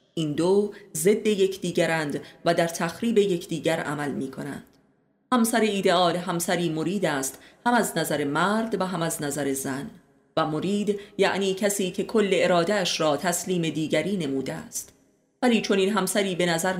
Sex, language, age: female, Persian, 30-49